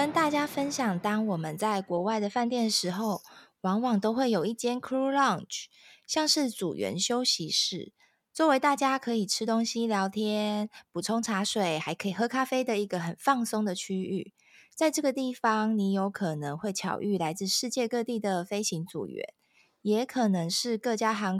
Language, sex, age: Chinese, female, 20-39